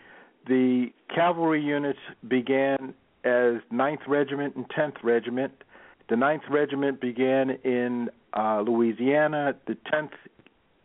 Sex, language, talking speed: male, English, 105 wpm